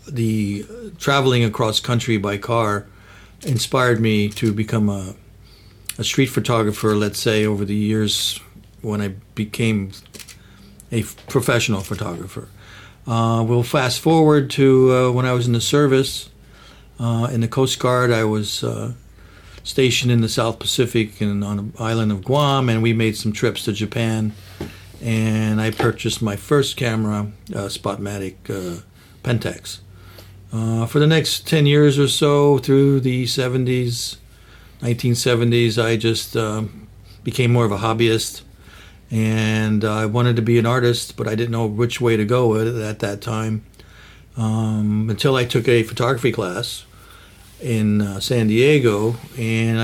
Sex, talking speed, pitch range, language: male, 150 wpm, 105-120 Hz, English